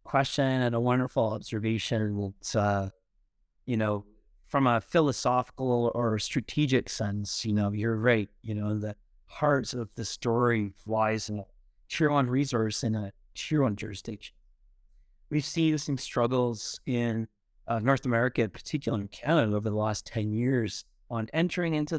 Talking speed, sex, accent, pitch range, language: 155 wpm, male, American, 110-135 Hz, English